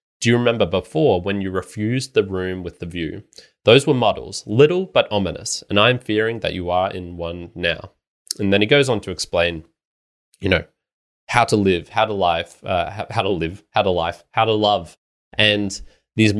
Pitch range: 90-110 Hz